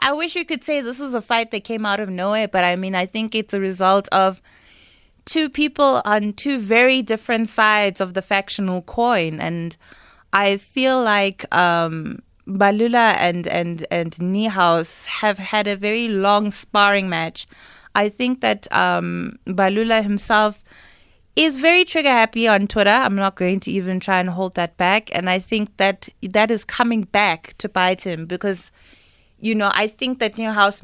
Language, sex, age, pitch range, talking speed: English, female, 20-39, 180-225 Hz, 175 wpm